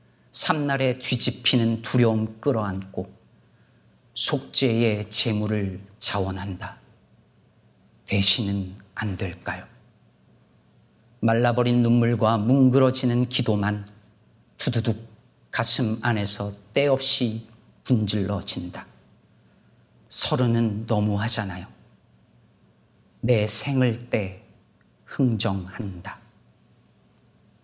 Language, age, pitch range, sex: Korean, 40-59, 105-135 Hz, male